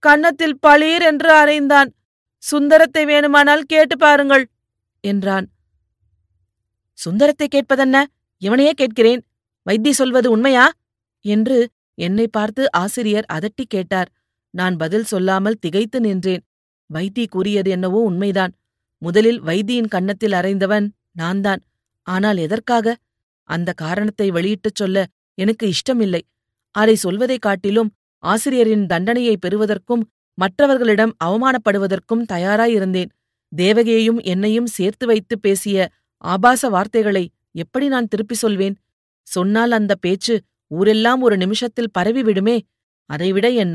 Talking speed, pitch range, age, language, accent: 100 wpm, 185-235 Hz, 30-49, Tamil, native